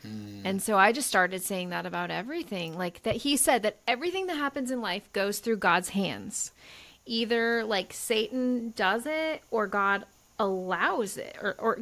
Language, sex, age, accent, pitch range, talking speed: English, female, 30-49, American, 195-250 Hz, 175 wpm